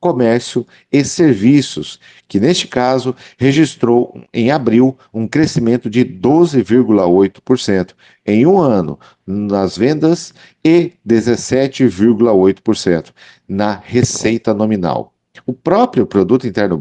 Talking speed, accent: 95 wpm, Brazilian